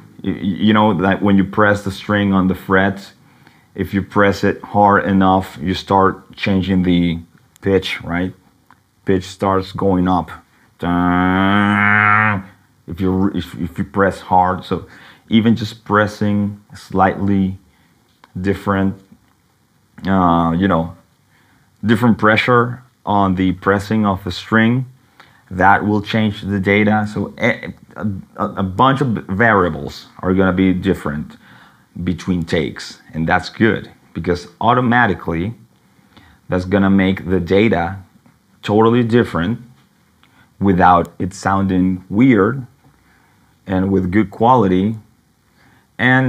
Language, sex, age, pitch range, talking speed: English, male, 30-49, 95-105 Hz, 120 wpm